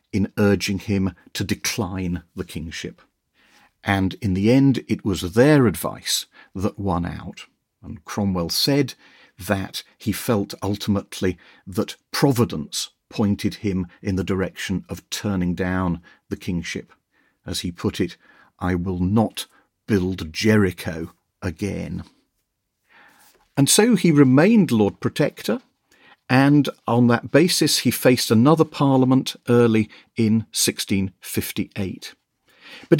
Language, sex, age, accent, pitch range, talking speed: English, male, 50-69, British, 95-130 Hz, 120 wpm